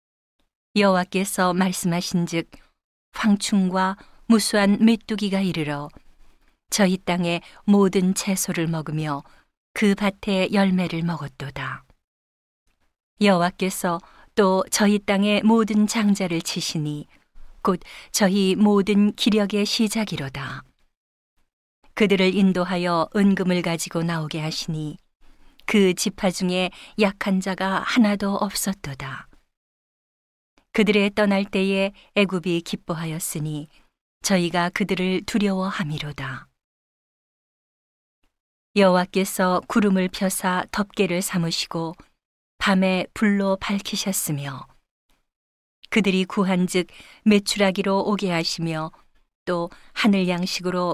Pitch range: 170-200 Hz